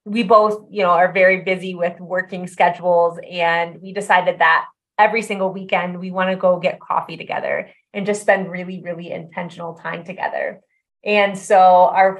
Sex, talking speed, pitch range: female, 170 wpm, 180-205 Hz